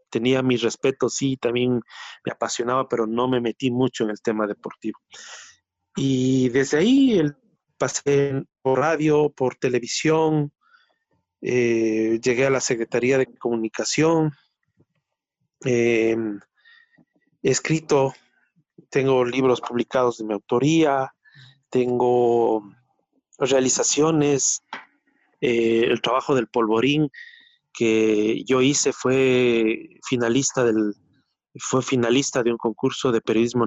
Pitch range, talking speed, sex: 115-140 Hz, 105 wpm, male